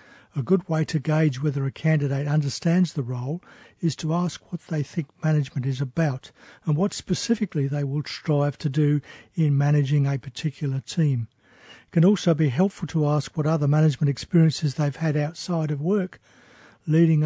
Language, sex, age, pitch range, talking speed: English, male, 60-79, 145-170 Hz, 175 wpm